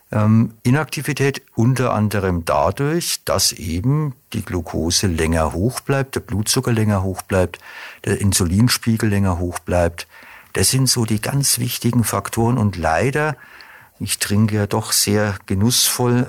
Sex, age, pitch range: male, 50-69, 90-120 Hz